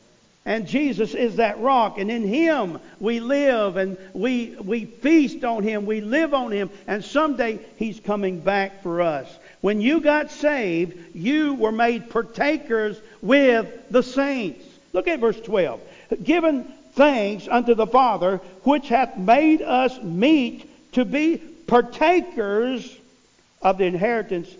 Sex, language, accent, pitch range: male, English, American, 185-250 Hz